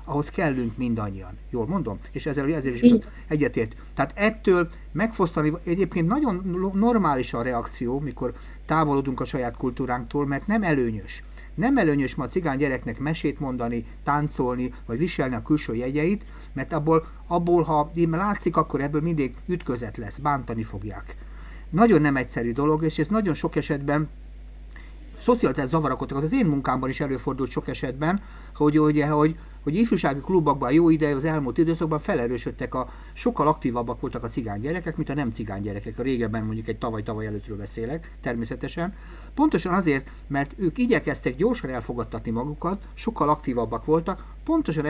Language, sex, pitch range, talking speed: Hungarian, male, 120-165 Hz, 150 wpm